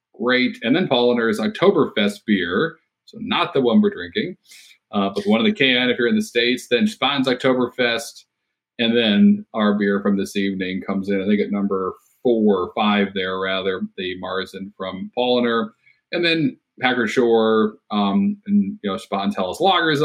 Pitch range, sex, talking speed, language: 105-160 Hz, male, 175 wpm, English